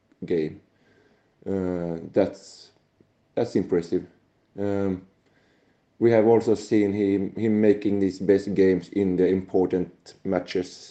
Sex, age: male, 30-49